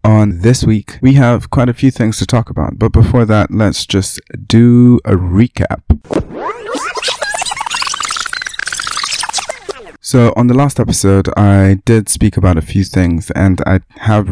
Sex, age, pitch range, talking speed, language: male, 20-39, 95-115 Hz, 145 wpm, English